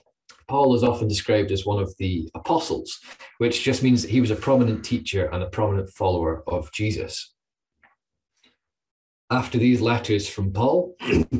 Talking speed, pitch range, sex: 155 wpm, 95-120 Hz, male